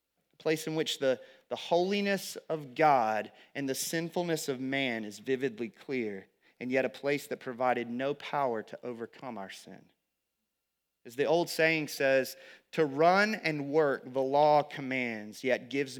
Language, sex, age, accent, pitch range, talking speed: English, male, 30-49, American, 140-195 Hz, 160 wpm